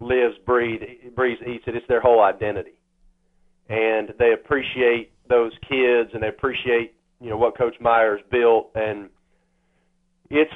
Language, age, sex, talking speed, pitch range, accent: English, 40-59, male, 135 wpm, 115-140 Hz, American